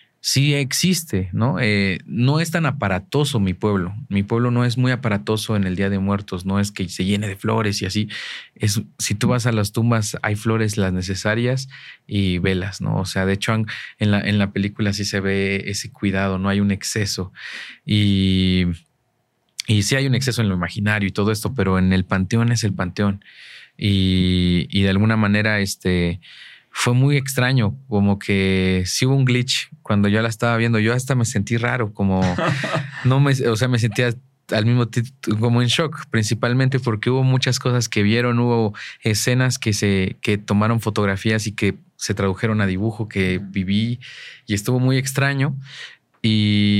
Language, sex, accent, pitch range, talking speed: Spanish, male, Mexican, 100-120 Hz, 190 wpm